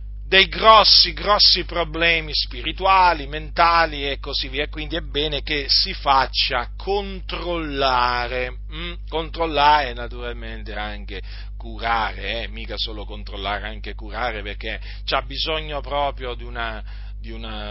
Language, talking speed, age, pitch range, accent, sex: Italian, 120 wpm, 40-59, 125-205 Hz, native, male